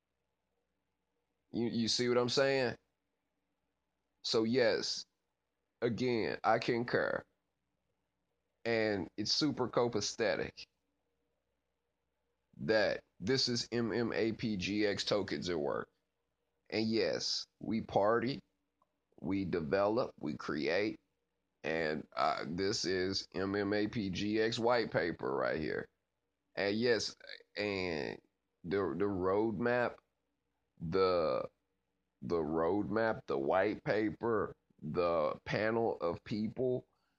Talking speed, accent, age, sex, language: 90 wpm, American, 30-49, male, English